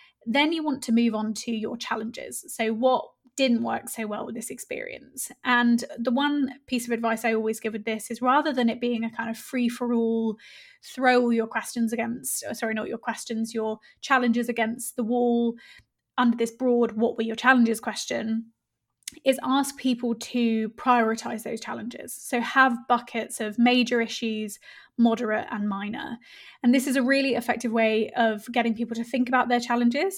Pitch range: 225-255 Hz